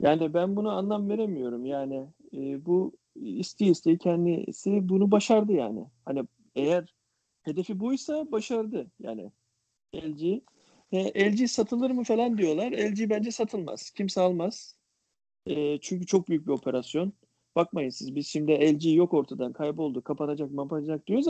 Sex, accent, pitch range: male, native, 140-210 Hz